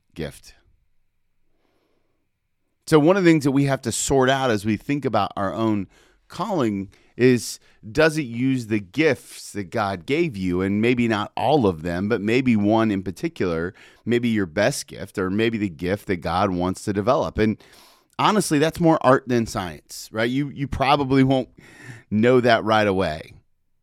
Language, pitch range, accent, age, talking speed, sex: English, 100-140 Hz, American, 30-49, 175 wpm, male